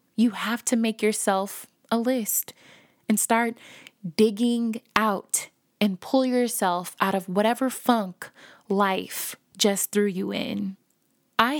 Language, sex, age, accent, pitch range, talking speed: English, female, 20-39, American, 200-235 Hz, 125 wpm